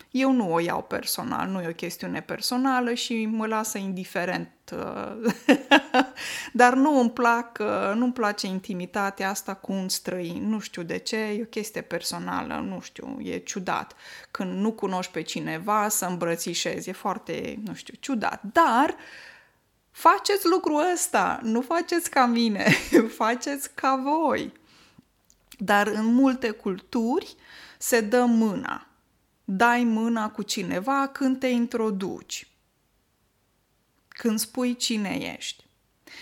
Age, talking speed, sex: 20-39, 130 wpm, female